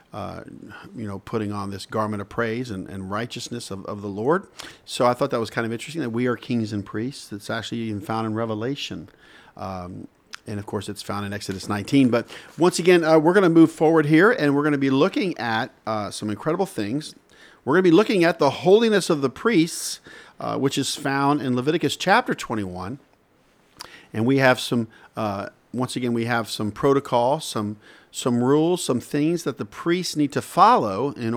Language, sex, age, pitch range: English, male, 50-69, 110-145 Hz